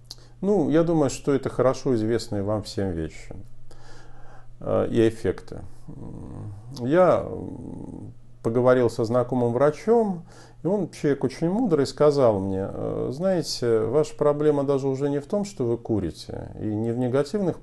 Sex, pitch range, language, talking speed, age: male, 110-145 Hz, Russian, 135 wpm, 50-69